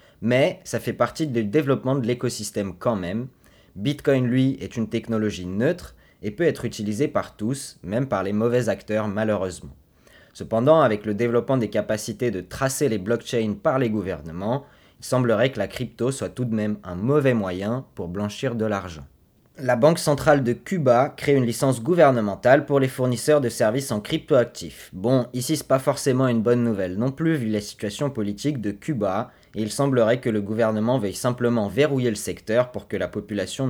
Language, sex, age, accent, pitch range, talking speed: French, male, 20-39, French, 105-130 Hz, 185 wpm